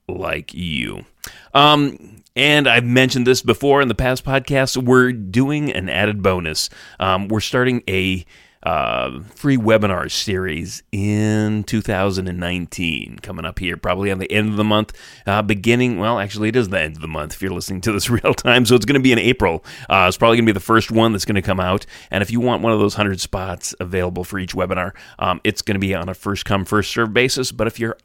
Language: English